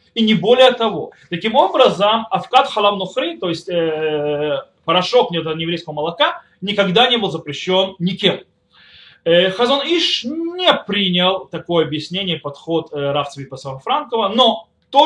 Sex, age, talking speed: male, 20-39, 125 wpm